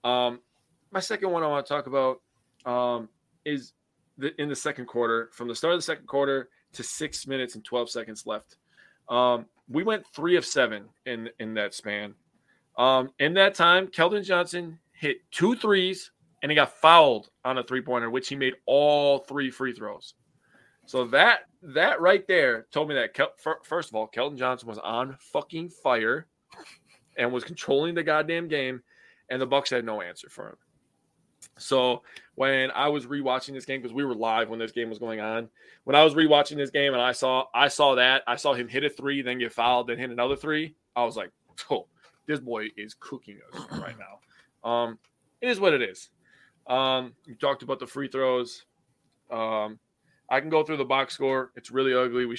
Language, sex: English, male